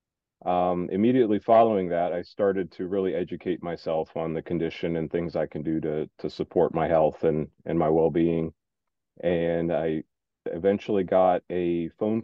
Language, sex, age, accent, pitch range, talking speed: English, male, 40-59, American, 85-100 Hz, 160 wpm